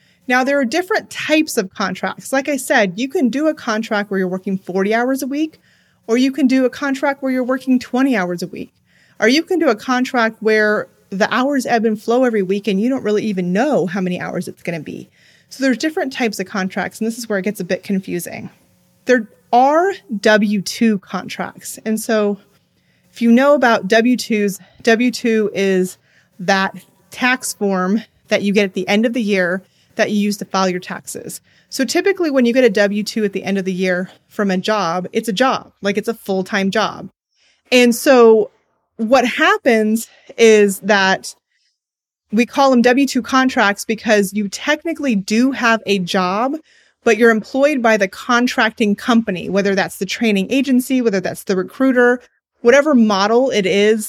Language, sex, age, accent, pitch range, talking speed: English, female, 30-49, American, 200-255 Hz, 190 wpm